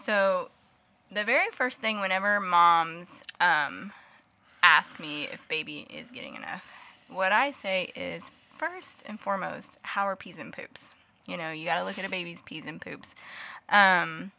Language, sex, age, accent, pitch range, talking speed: English, female, 20-39, American, 180-220 Hz, 165 wpm